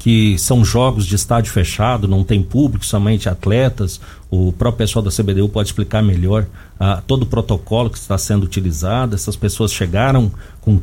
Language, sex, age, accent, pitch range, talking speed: Portuguese, male, 50-69, Brazilian, 100-130 Hz, 170 wpm